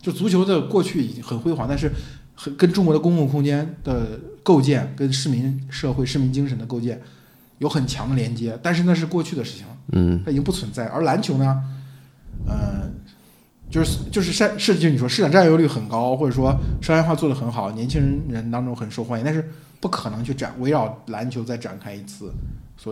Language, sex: Chinese, male